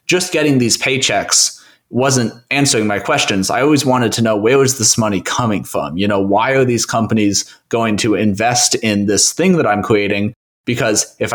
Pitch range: 105-135 Hz